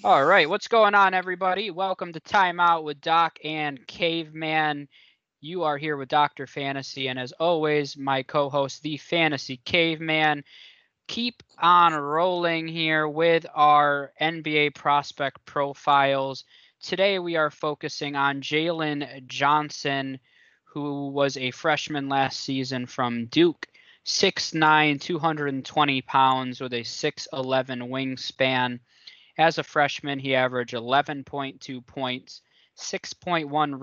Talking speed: 120 wpm